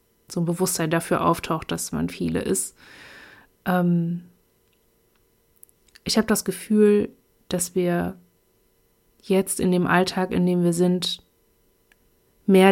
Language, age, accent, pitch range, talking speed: German, 30-49, German, 175-200 Hz, 120 wpm